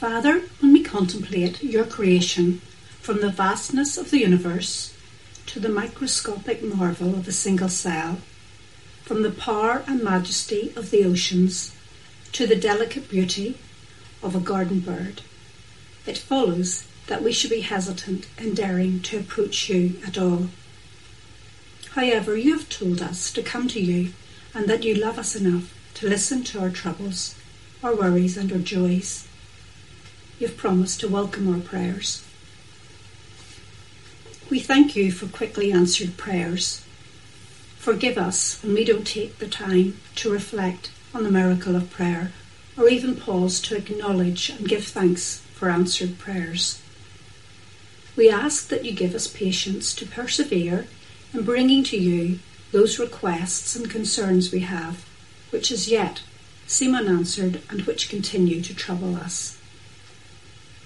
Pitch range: 135-215 Hz